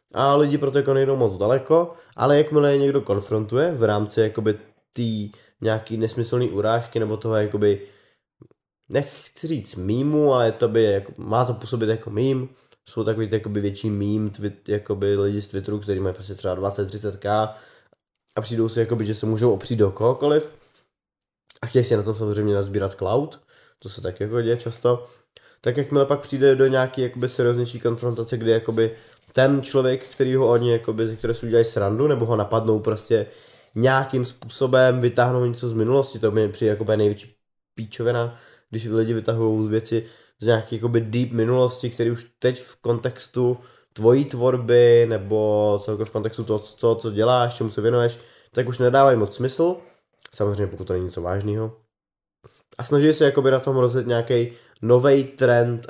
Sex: male